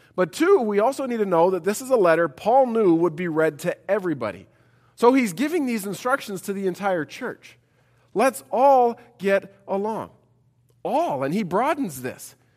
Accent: American